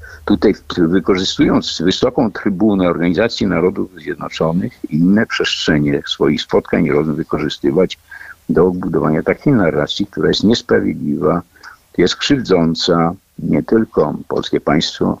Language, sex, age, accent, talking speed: Polish, male, 50-69, native, 105 wpm